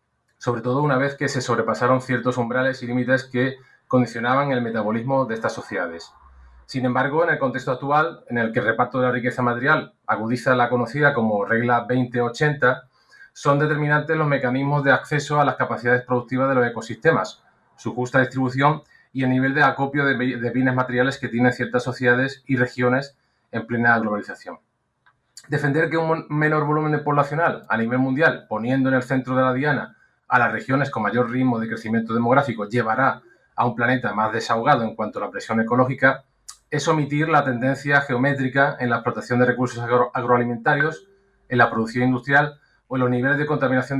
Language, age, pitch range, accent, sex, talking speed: Spanish, 30-49, 120-140 Hz, Spanish, male, 180 wpm